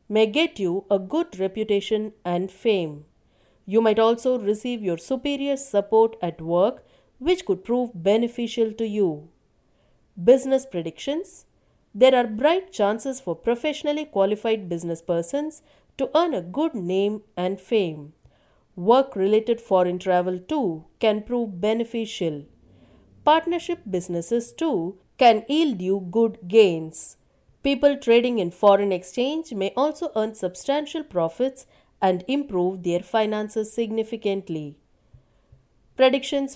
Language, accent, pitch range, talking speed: English, Indian, 185-265 Hz, 120 wpm